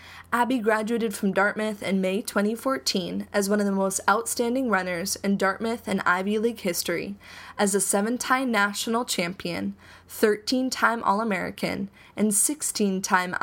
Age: 10-29